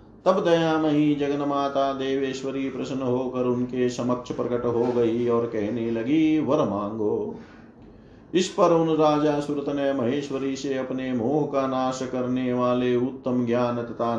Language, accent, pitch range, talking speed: Hindi, native, 115-140 Hz, 140 wpm